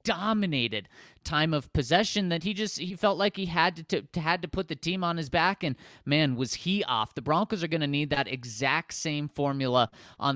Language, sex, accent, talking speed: English, male, American, 225 wpm